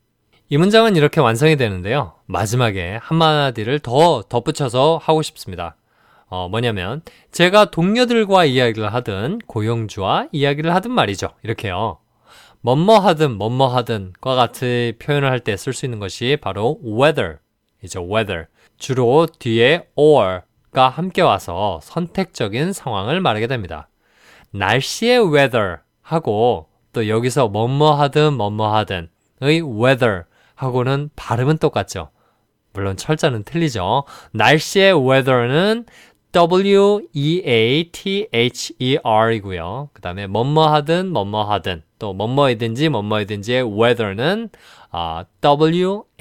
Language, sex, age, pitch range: Korean, male, 20-39, 105-150 Hz